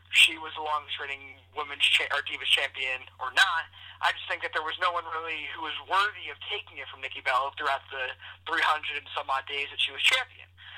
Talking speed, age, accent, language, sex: 225 wpm, 20-39, American, English, male